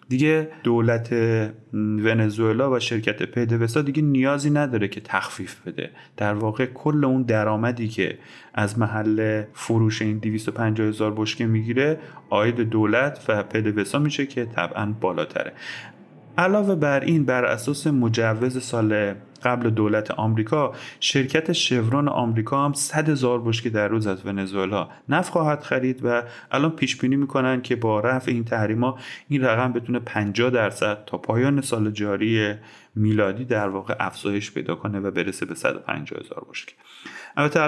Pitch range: 110-130 Hz